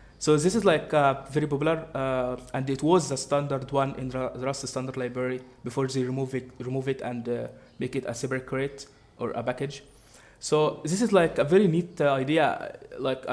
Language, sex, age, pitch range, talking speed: English, male, 20-39, 130-150 Hz, 205 wpm